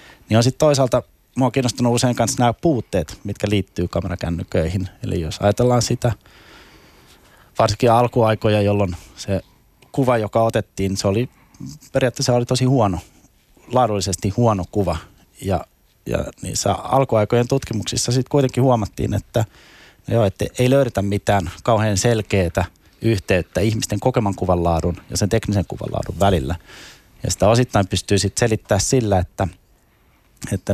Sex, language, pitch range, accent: male, Finnish, 95-120 Hz, native